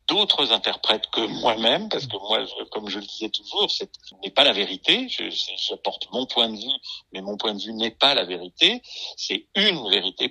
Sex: male